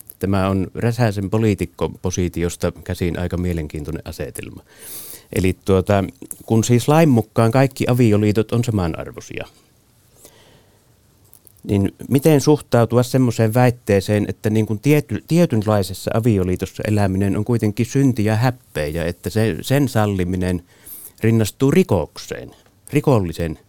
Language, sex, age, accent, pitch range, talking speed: Finnish, male, 30-49, native, 95-120 Hz, 105 wpm